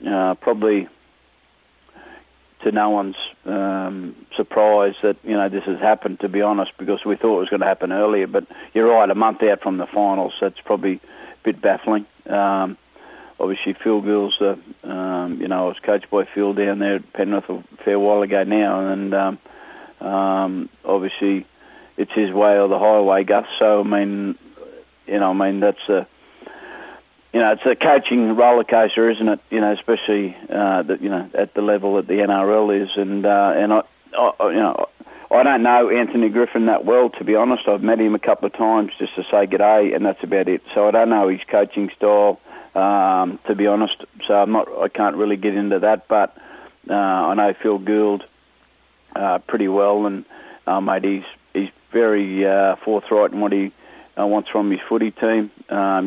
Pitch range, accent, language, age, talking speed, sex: 100-105 Hz, Australian, English, 40-59, 195 wpm, male